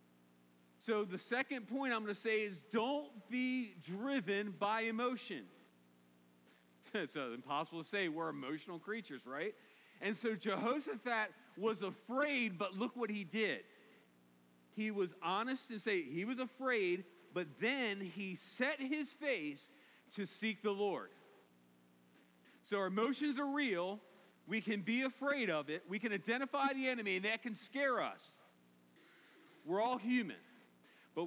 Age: 40-59